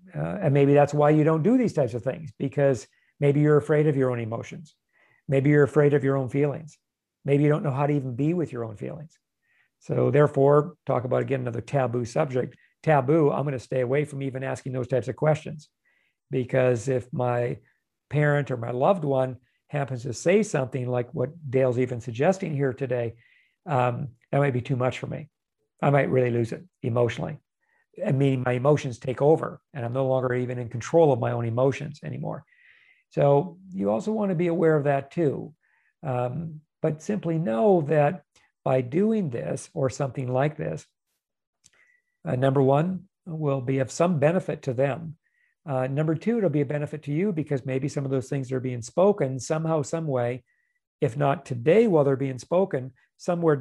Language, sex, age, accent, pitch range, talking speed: English, male, 50-69, American, 130-160 Hz, 195 wpm